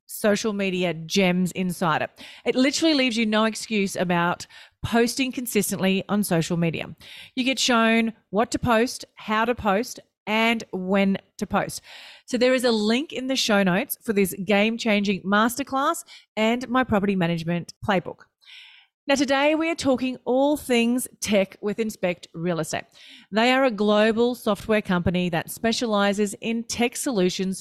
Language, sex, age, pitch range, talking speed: English, female, 40-59, 190-245 Hz, 155 wpm